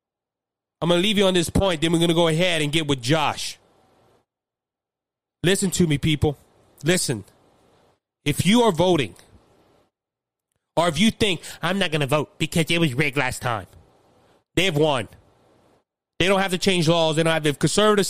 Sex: male